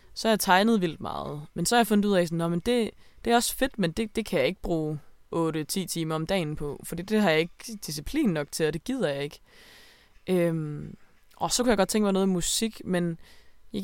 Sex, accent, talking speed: female, native, 245 wpm